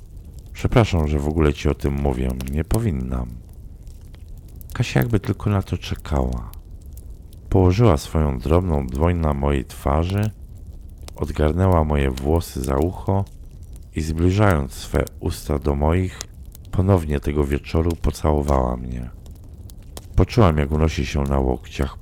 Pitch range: 70-90 Hz